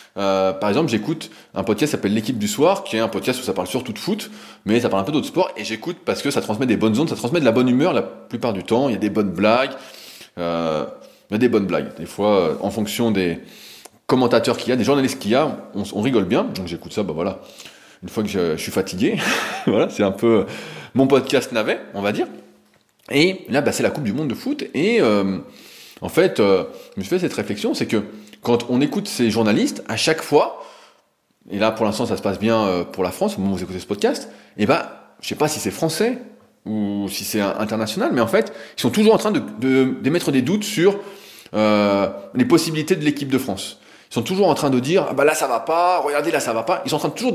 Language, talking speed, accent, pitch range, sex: French, 265 wpm, French, 105-165 Hz, male